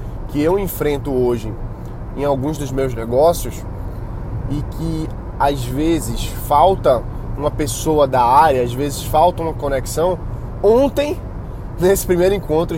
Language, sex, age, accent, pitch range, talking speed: Portuguese, male, 20-39, Brazilian, 115-150 Hz, 125 wpm